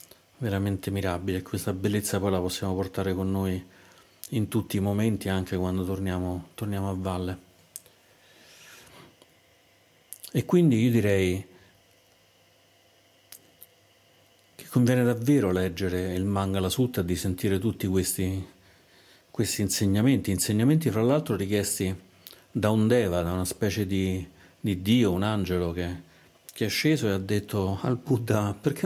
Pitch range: 95-115 Hz